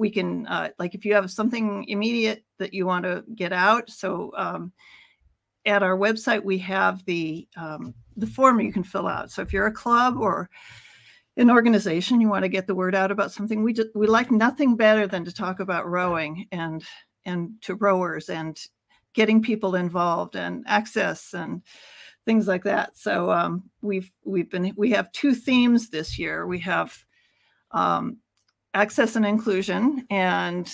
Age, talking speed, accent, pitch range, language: 50-69, 175 wpm, American, 180-225 Hz, English